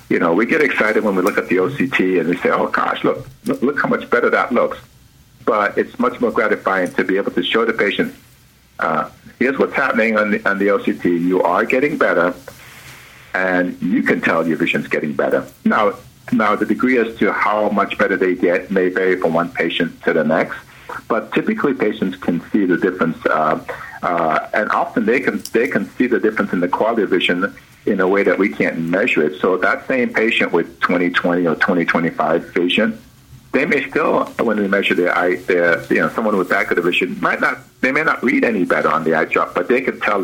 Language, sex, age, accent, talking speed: English, male, 50-69, American, 220 wpm